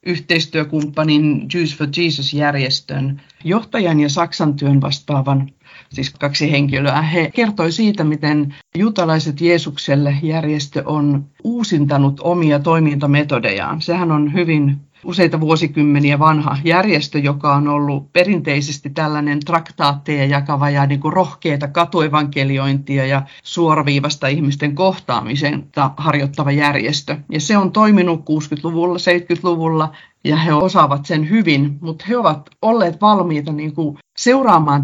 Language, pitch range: Finnish, 145-175 Hz